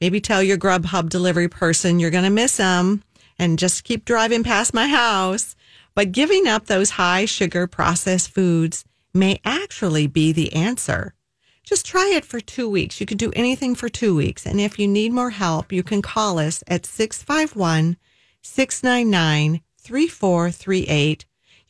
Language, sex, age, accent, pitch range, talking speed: English, female, 40-59, American, 165-225 Hz, 155 wpm